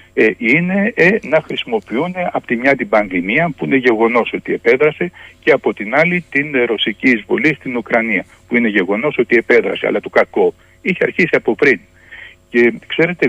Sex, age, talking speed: male, 60-79, 175 wpm